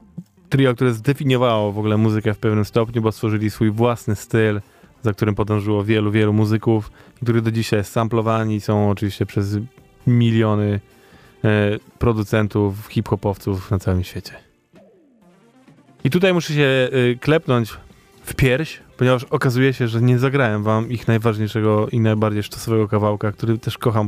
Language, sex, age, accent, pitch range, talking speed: Polish, male, 20-39, native, 110-135 Hz, 145 wpm